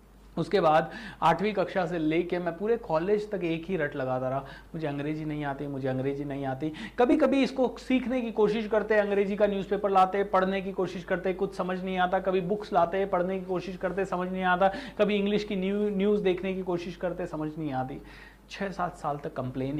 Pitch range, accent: 165-230 Hz, native